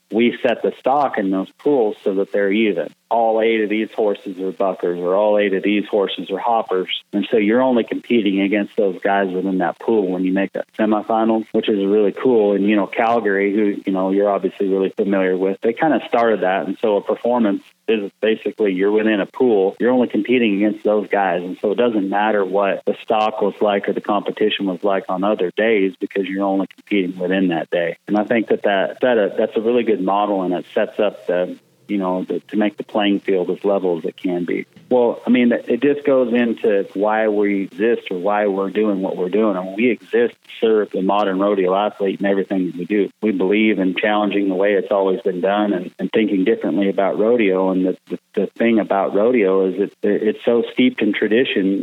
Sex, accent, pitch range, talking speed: male, American, 95-110 Hz, 225 wpm